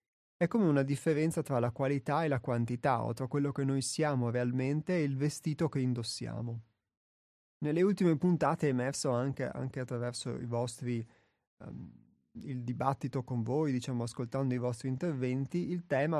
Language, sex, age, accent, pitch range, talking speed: Italian, male, 30-49, native, 120-150 Hz, 165 wpm